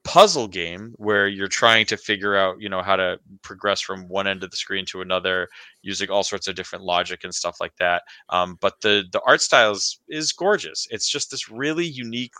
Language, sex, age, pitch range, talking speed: English, male, 20-39, 100-130 Hz, 215 wpm